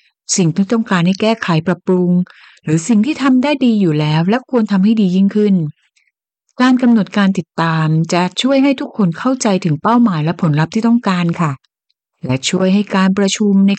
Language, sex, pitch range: Thai, female, 155-220 Hz